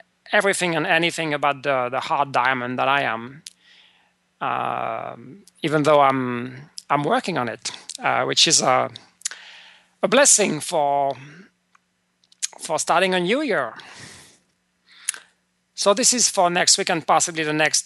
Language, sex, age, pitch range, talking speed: English, male, 40-59, 150-210 Hz, 140 wpm